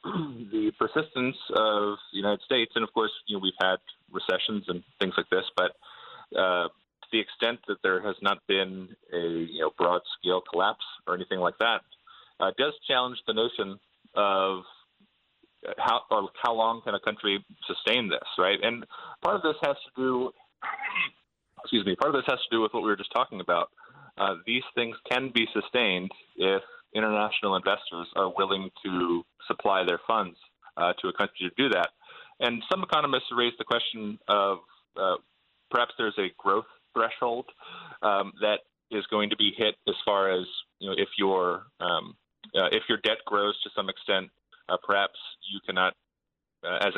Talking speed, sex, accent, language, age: 180 wpm, male, American, English, 30-49